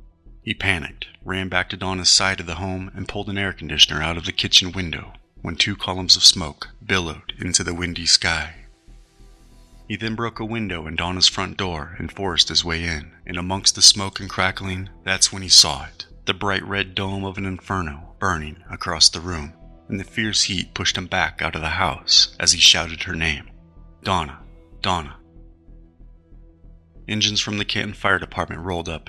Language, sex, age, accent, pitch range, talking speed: English, male, 30-49, American, 85-95 Hz, 190 wpm